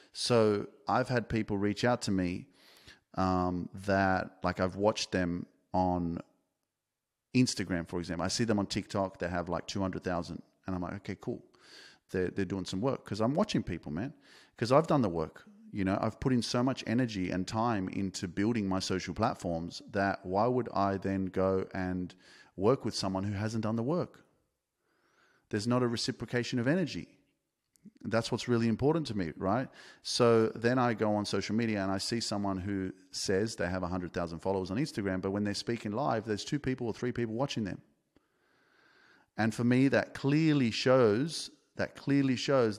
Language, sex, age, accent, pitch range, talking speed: English, male, 30-49, Australian, 95-125 Hz, 185 wpm